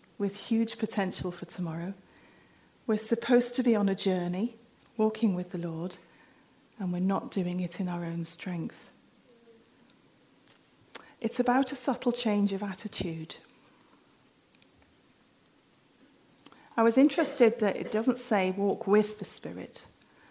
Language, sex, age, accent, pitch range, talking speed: English, female, 40-59, British, 190-240 Hz, 125 wpm